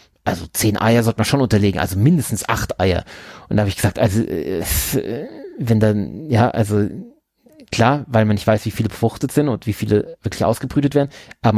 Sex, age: male, 30-49